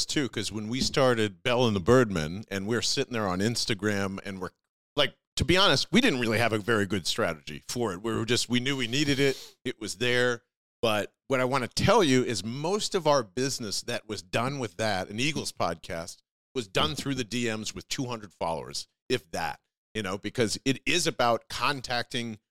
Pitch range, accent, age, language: 115-155 Hz, American, 40-59, English